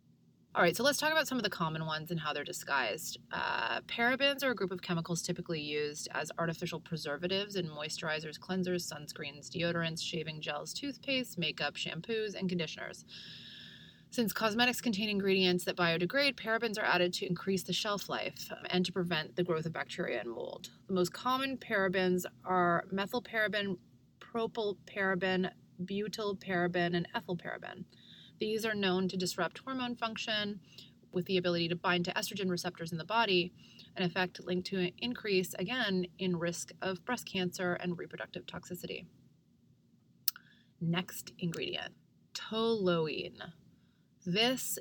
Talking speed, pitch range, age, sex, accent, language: 145 wpm, 170-205 Hz, 30-49, female, American, English